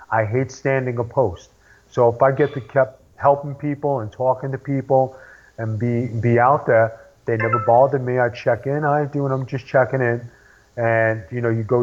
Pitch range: 120-140 Hz